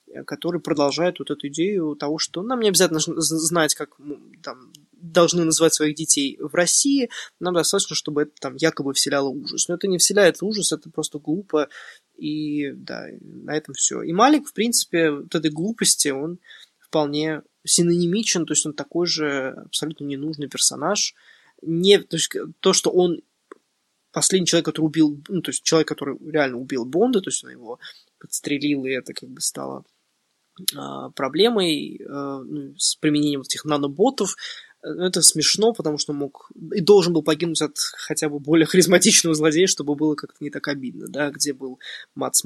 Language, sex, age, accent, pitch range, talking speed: Ukrainian, male, 20-39, native, 145-170 Hz, 165 wpm